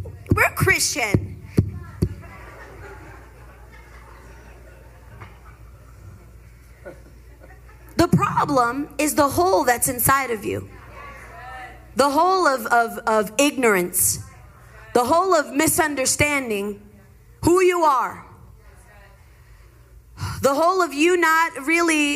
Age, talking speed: 30-49, 80 wpm